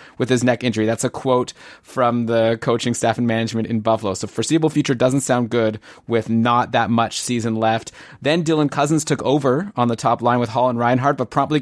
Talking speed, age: 215 wpm, 20-39